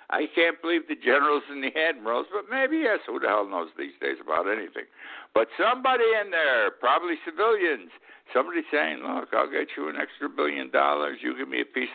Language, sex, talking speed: English, male, 200 wpm